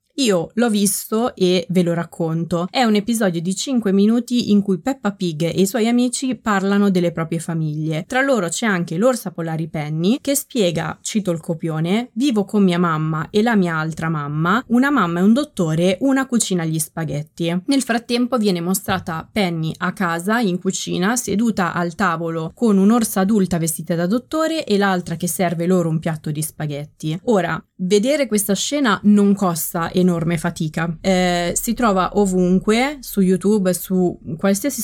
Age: 20-39